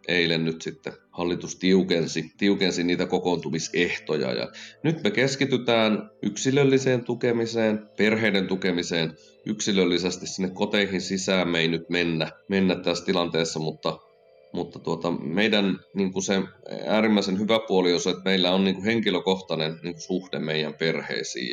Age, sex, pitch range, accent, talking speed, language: 30-49, male, 80-100 Hz, native, 140 wpm, Finnish